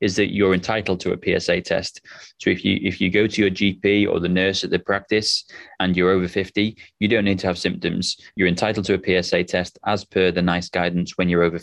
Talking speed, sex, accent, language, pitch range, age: 240 wpm, male, British, English, 90-105 Hz, 20-39